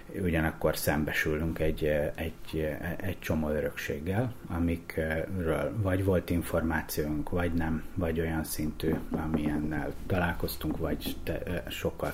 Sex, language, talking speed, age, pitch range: male, Hungarian, 105 wpm, 30-49, 75-90 Hz